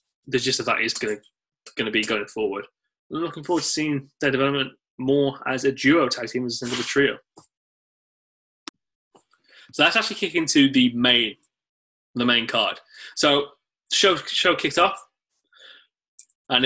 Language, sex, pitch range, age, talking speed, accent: English, male, 115-145 Hz, 20-39, 160 wpm, British